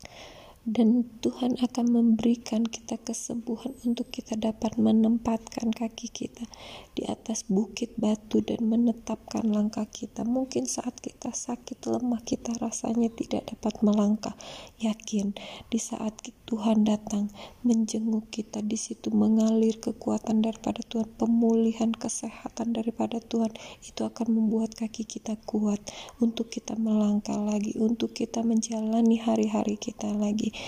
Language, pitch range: Indonesian, 215-235 Hz